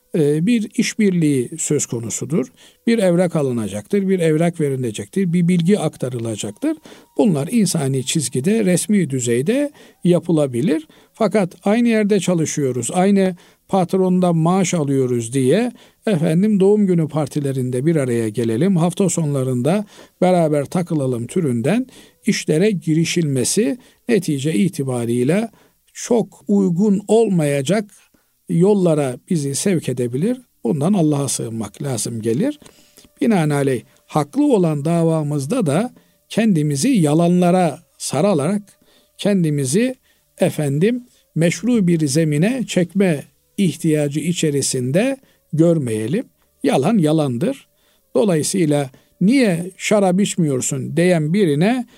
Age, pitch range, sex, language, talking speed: 50-69, 145-200 Hz, male, Turkish, 95 wpm